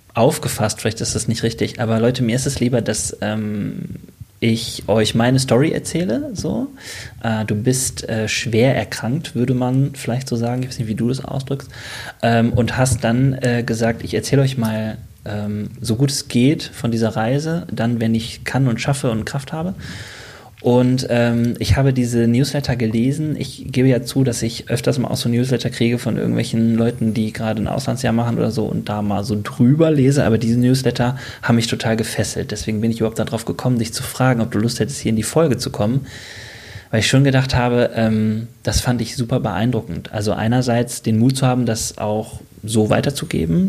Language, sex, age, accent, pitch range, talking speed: German, male, 20-39, German, 110-130 Hz, 200 wpm